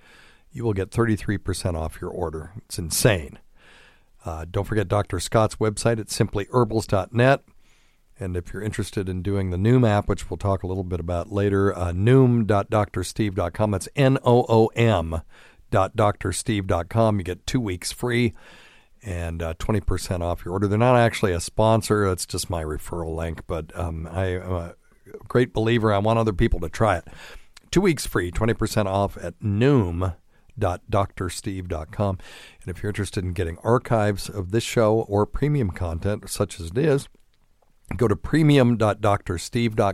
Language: English